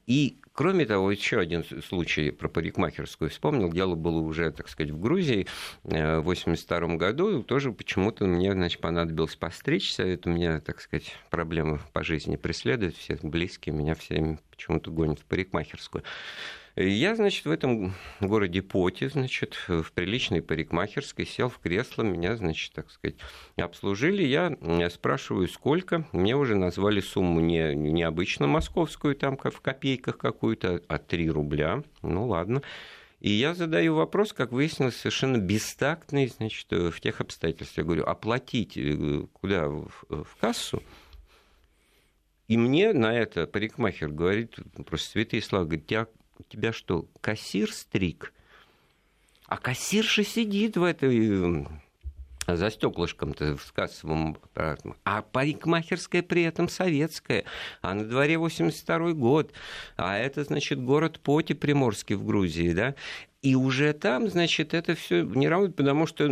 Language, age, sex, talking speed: Russian, 50-69, male, 140 wpm